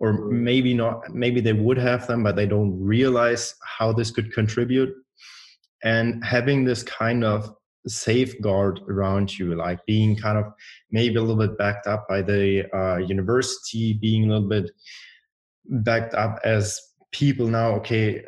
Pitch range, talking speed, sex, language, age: 105-120 Hz, 160 wpm, male, English, 20-39